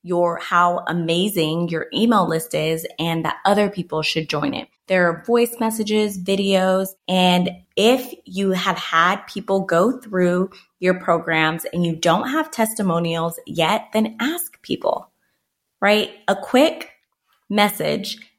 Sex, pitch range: female, 170-215 Hz